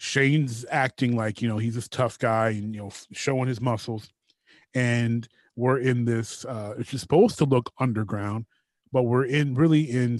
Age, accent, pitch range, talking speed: 30-49, American, 115-140 Hz, 175 wpm